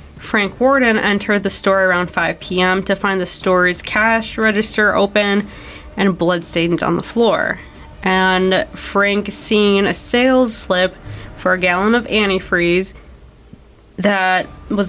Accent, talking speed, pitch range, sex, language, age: American, 135 wpm, 180-205 Hz, female, English, 20-39